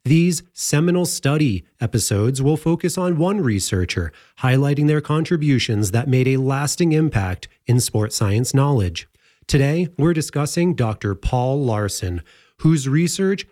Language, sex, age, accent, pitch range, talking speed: English, male, 30-49, American, 115-160 Hz, 130 wpm